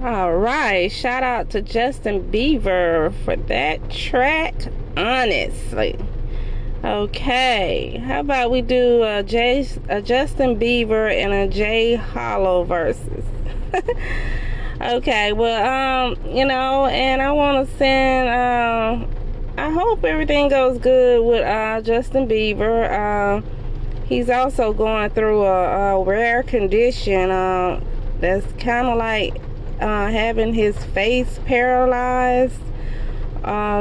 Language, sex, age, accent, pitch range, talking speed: English, female, 20-39, American, 185-245 Hz, 115 wpm